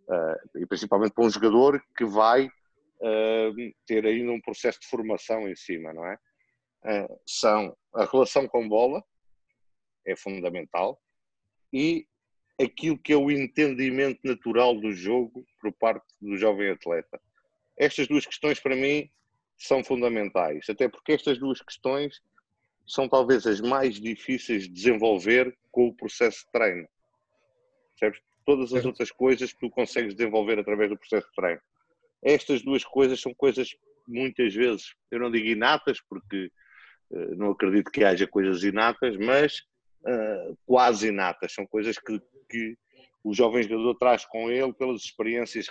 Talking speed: 150 wpm